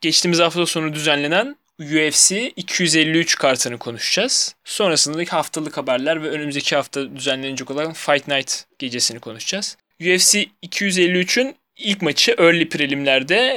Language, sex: Turkish, male